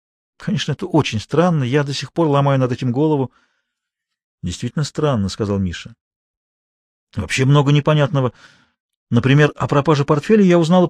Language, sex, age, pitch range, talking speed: Russian, male, 40-59, 115-155 Hz, 140 wpm